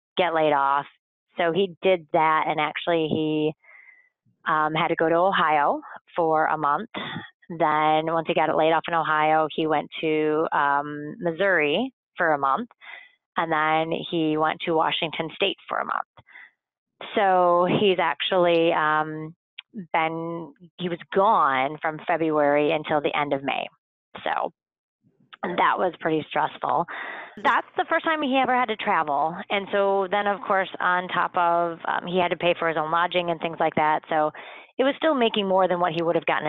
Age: 30-49